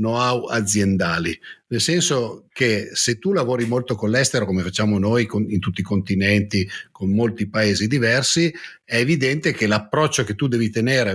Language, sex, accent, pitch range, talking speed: Italian, male, native, 105-135 Hz, 165 wpm